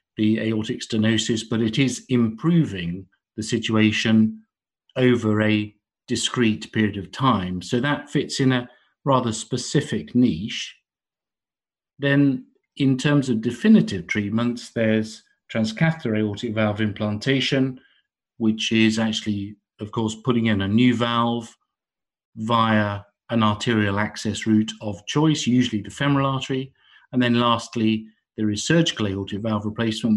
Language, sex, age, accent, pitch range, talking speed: English, male, 50-69, British, 105-125 Hz, 125 wpm